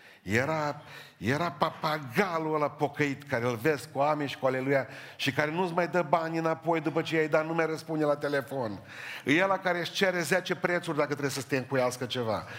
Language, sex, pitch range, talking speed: Romanian, male, 140-185 Hz, 200 wpm